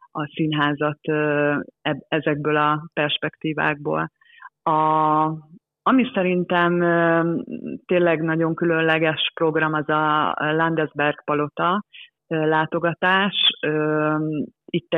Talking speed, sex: 70 wpm, female